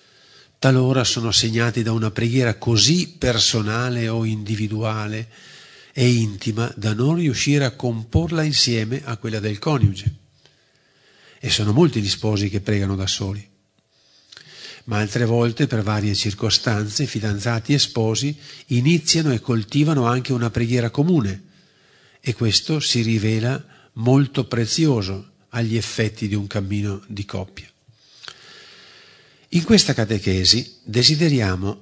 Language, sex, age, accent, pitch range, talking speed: Italian, male, 50-69, native, 105-135 Hz, 120 wpm